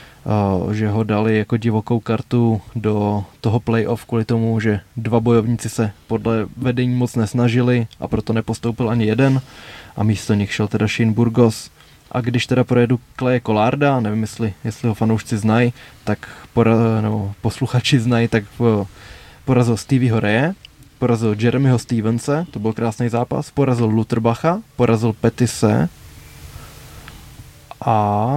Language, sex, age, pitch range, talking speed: Czech, male, 20-39, 110-125 Hz, 130 wpm